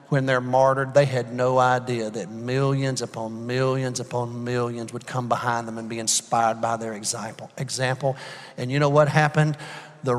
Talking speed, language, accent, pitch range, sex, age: 175 wpm, English, American, 125-155 Hz, male, 50-69